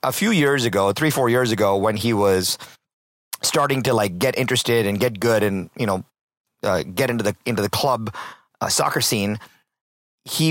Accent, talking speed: American, 190 wpm